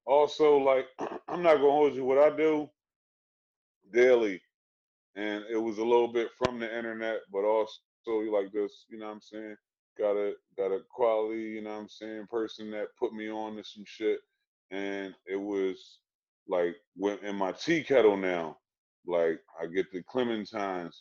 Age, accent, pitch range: 20-39, American, 100-145 Hz